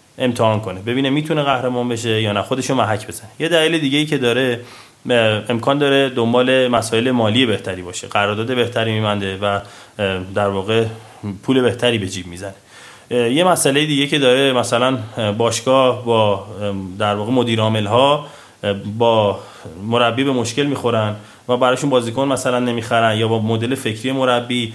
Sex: male